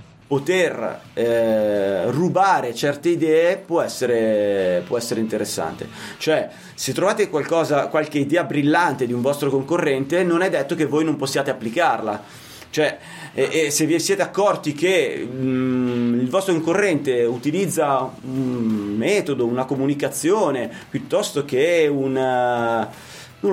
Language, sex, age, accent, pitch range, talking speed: Italian, male, 30-49, native, 130-175 Hz, 130 wpm